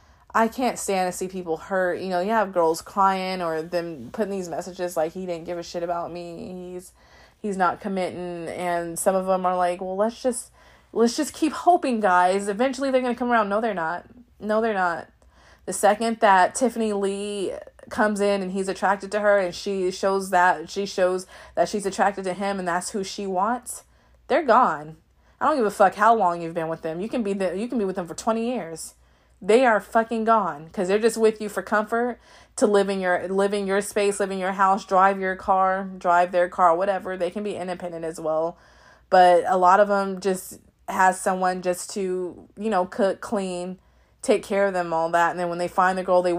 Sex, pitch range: female, 175-210 Hz